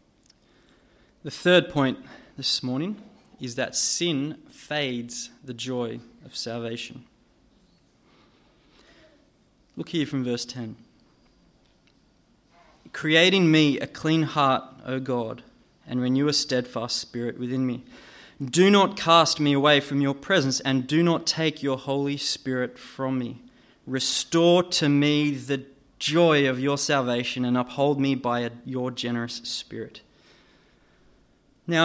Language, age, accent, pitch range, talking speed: English, 20-39, Australian, 125-150 Hz, 120 wpm